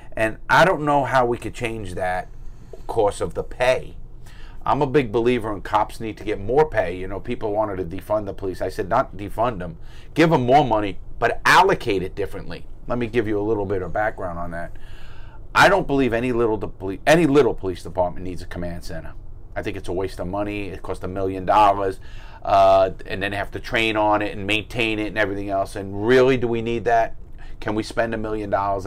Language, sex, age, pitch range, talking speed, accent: English, male, 40-59, 95-115 Hz, 230 wpm, American